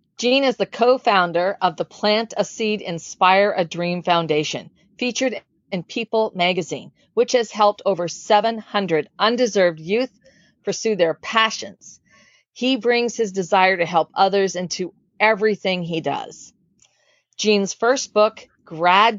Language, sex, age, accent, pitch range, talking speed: English, female, 40-59, American, 180-220 Hz, 130 wpm